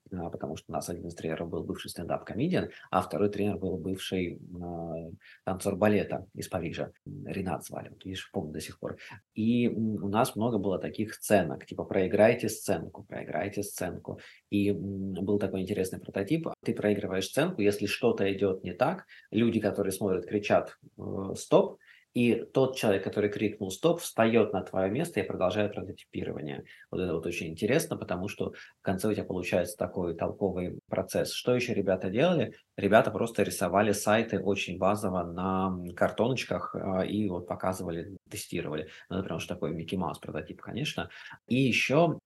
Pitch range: 90-105 Hz